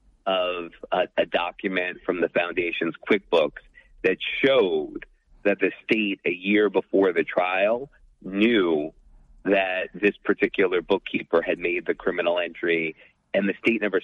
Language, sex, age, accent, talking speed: English, male, 30-49, American, 135 wpm